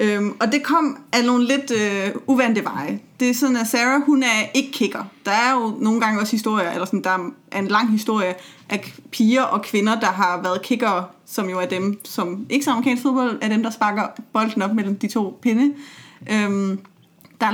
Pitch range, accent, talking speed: 210-255 Hz, native, 215 wpm